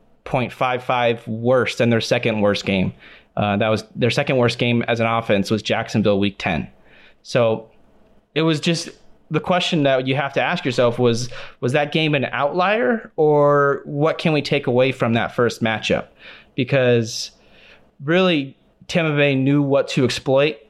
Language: English